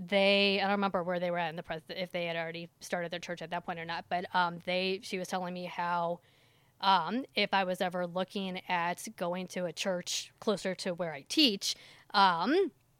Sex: female